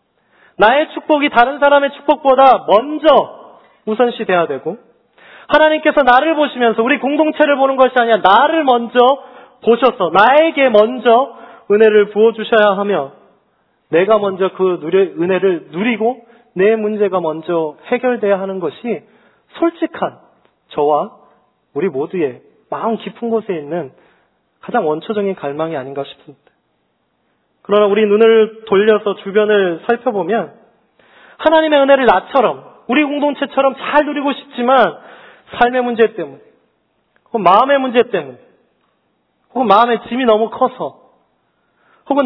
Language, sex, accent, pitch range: Korean, male, native, 200-270 Hz